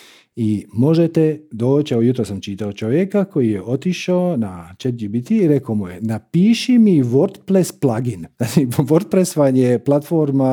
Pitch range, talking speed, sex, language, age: 115-170 Hz, 155 wpm, male, Croatian, 40-59